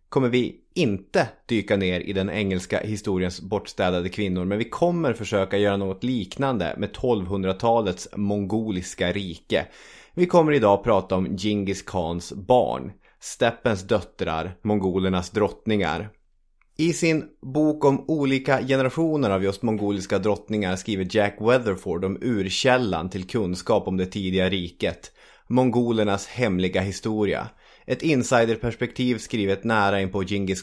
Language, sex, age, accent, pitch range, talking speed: English, male, 30-49, Swedish, 95-120 Hz, 125 wpm